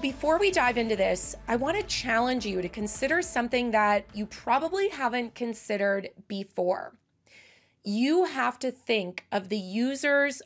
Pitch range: 200-255 Hz